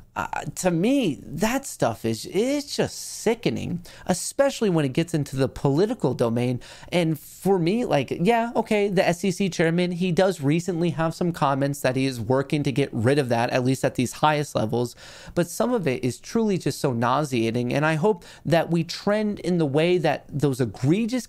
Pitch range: 130-175 Hz